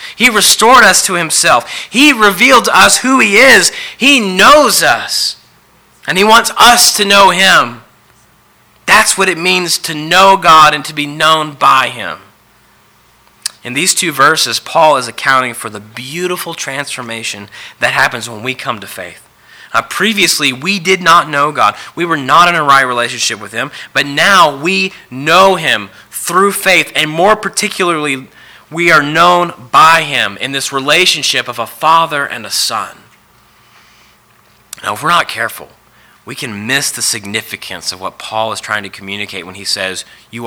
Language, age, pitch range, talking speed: English, 30-49, 115-185 Hz, 170 wpm